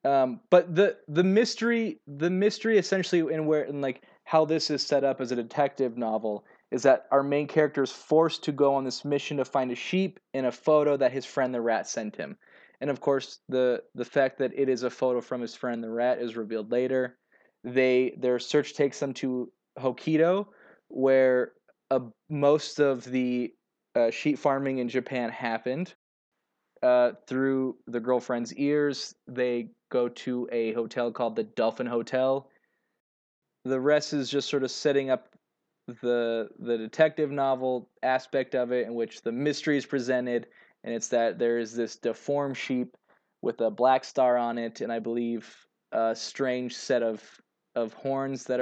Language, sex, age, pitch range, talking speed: English, male, 20-39, 120-145 Hz, 175 wpm